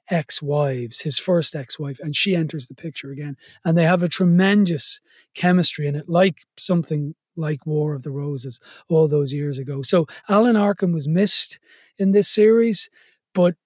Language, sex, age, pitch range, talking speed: English, male, 30-49, 140-185 Hz, 165 wpm